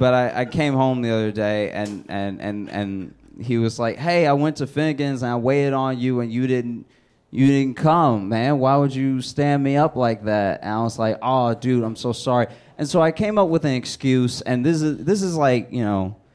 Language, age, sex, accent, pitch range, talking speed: English, 20-39, male, American, 110-140 Hz, 240 wpm